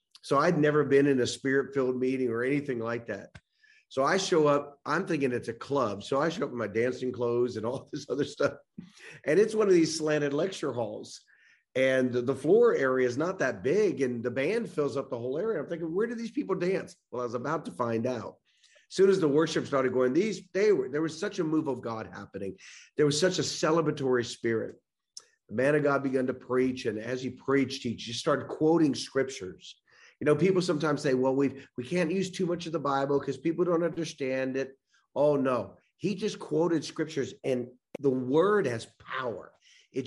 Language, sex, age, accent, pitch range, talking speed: English, male, 40-59, American, 125-165 Hz, 215 wpm